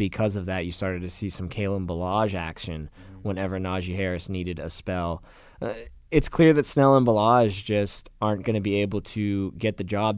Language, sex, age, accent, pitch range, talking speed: English, male, 20-39, American, 95-120 Hz, 200 wpm